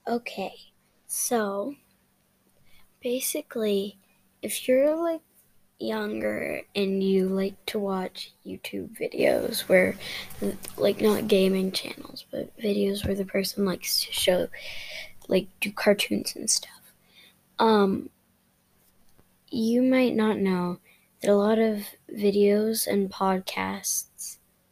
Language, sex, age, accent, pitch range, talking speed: English, female, 10-29, American, 195-240 Hz, 105 wpm